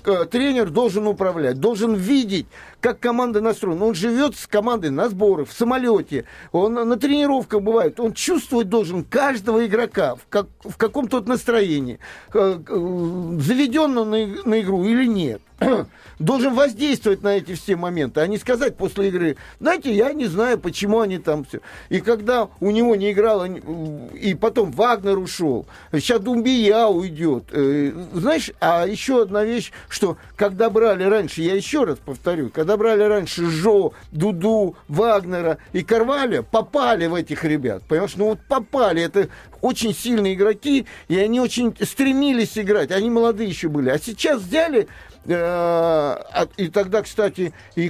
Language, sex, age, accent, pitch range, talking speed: Russian, male, 50-69, native, 175-235 Hz, 150 wpm